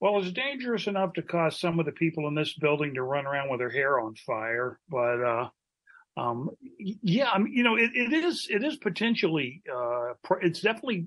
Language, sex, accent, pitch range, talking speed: English, male, American, 135-175 Hz, 215 wpm